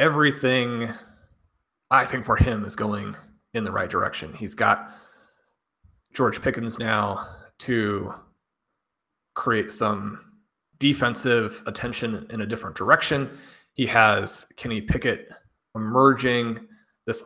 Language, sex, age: English, male, 30-49